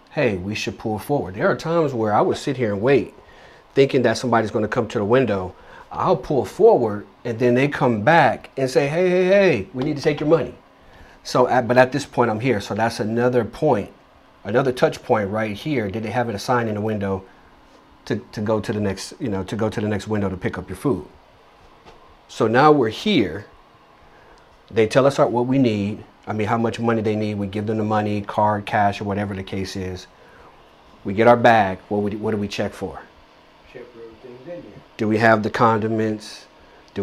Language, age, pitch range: English, 40-59, 105-125 Hz